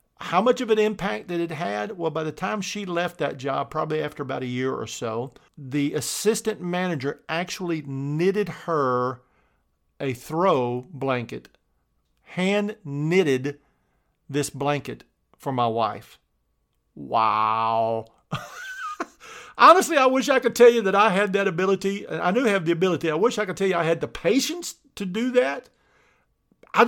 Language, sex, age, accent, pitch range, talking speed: English, male, 50-69, American, 150-220 Hz, 160 wpm